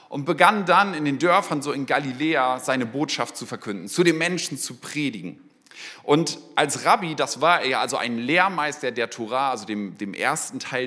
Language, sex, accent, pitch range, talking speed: German, male, German, 130-170 Hz, 190 wpm